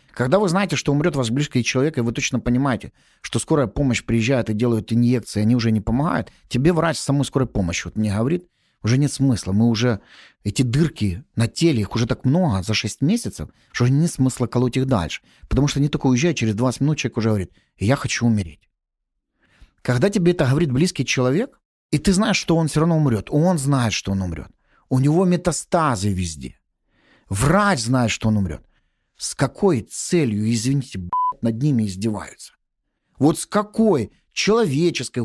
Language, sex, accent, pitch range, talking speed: Ukrainian, male, native, 110-160 Hz, 185 wpm